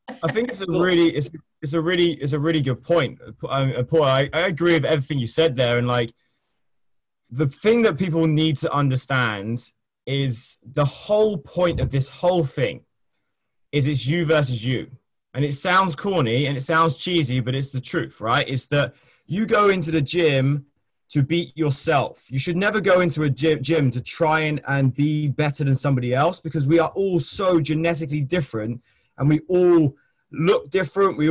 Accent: British